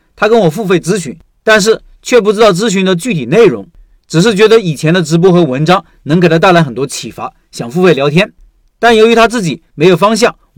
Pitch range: 160-220 Hz